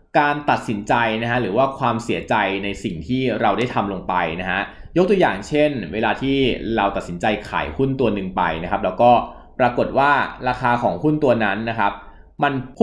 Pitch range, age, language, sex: 100-135 Hz, 20-39, Thai, male